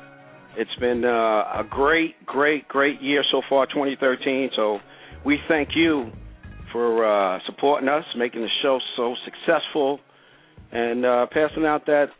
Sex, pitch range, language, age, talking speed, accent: male, 100-140 Hz, English, 50-69, 150 wpm, American